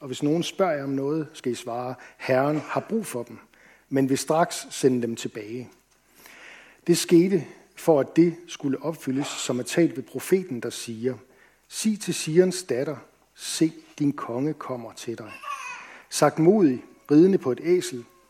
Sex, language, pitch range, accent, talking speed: male, Danish, 125-165 Hz, native, 165 wpm